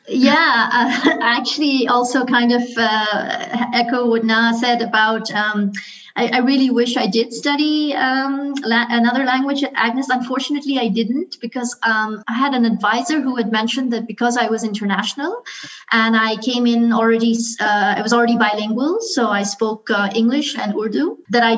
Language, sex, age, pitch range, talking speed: English, female, 30-49, 220-255 Hz, 170 wpm